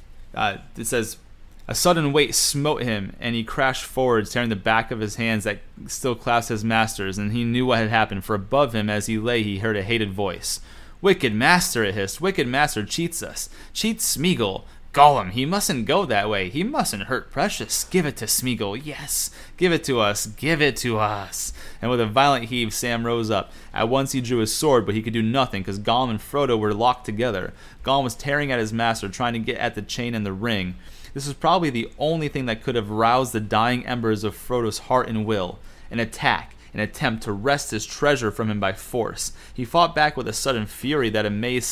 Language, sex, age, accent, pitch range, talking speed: English, male, 30-49, American, 105-125 Hz, 220 wpm